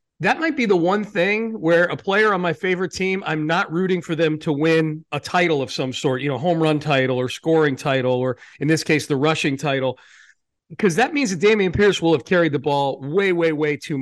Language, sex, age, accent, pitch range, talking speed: English, male, 40-59, American, 145-180 Hz, 235 wpm